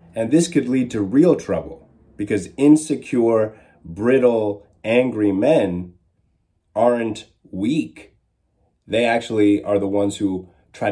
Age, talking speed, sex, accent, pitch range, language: 30-49, 115 wpm, male, American, 95-120 Hz, English